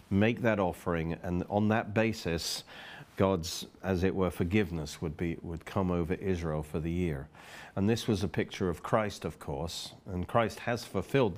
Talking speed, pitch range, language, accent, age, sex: 180 wpm, 85-105 Hz, English, British, 50-69, male